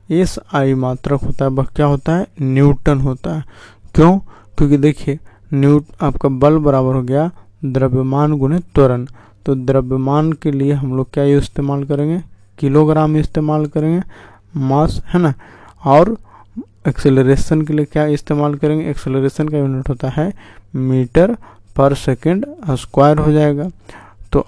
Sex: male